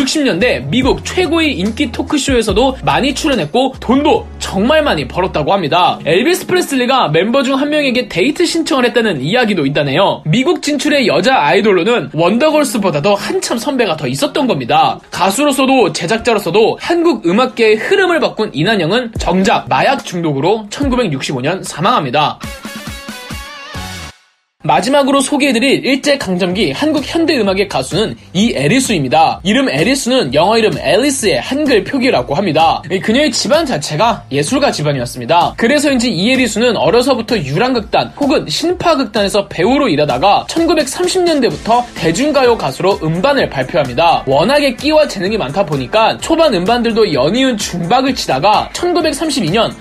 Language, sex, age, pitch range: Korean, male, 20-39, 205-295 Hz